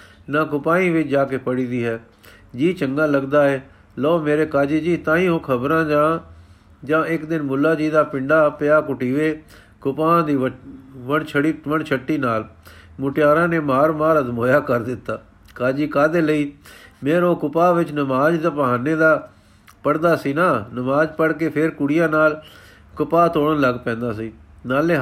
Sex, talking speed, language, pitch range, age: male, 165 wpm, Punjabi, 130-155 Hz, 50-69